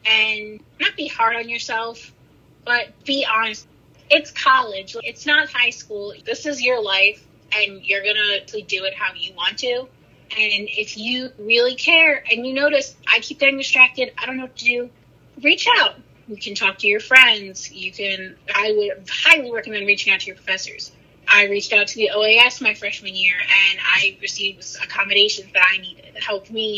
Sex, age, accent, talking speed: female, 20-39, American, 190 wpm